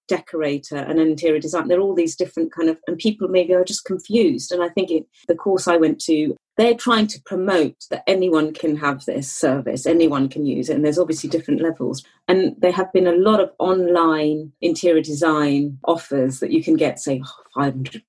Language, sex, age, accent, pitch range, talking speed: English, female, 40-59, British, 155-185 Hz, 200 wpm